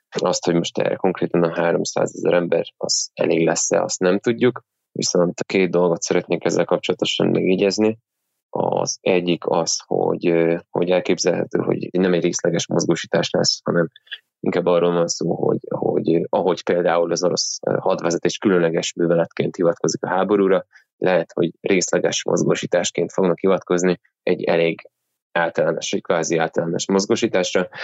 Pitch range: 85-105 Hz